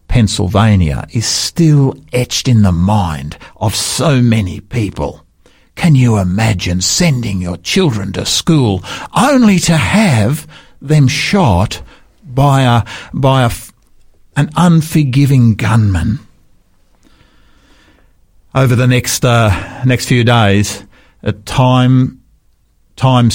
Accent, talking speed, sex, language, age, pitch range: Australian, 105 wpm, male, English, 50-69, 95-130 Hz